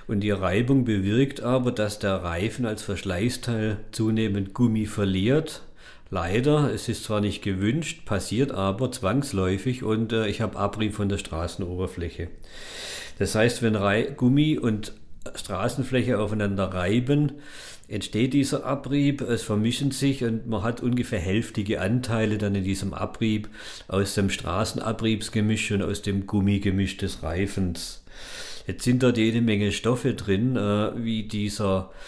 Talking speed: 135 wpm